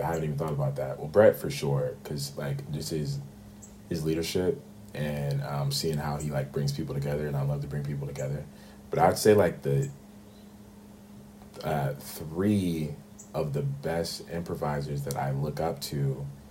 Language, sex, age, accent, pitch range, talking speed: English, male, 30-49, American, 70-85 Hz, 175 wpm